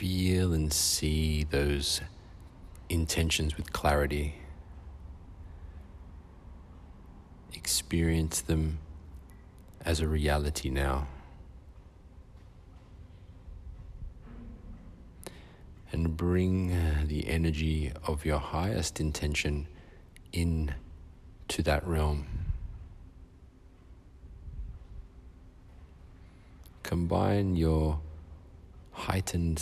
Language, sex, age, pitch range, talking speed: English, male, 40-59, 75-90 Hz, 55 wpm